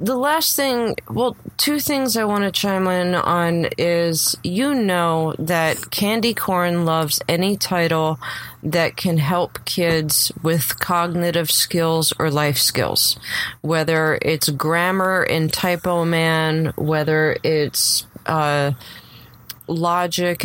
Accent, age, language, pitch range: American, 30-49, English, 155-175 Hz